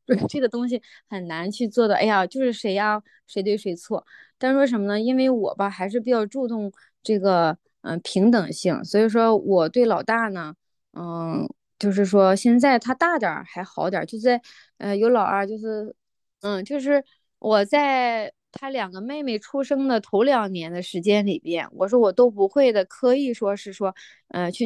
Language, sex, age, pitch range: Chinese, female, 20-39, 195-245 Hz